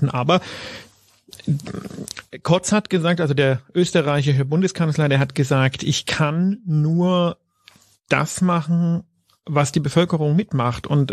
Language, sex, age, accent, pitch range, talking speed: German, male, 40-59, German, 140-165 Hz, 115 wpm